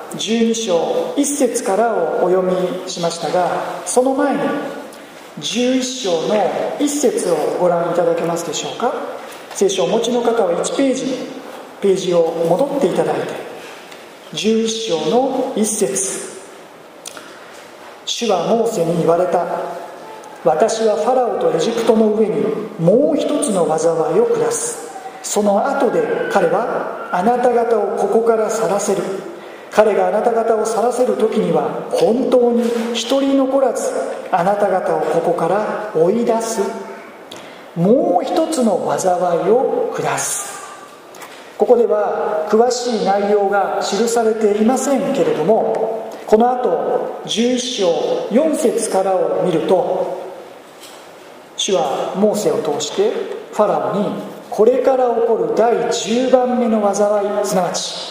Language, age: Japanese, 40-59